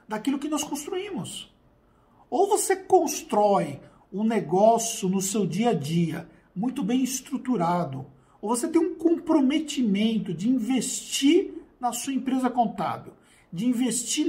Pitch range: 205-285 Hz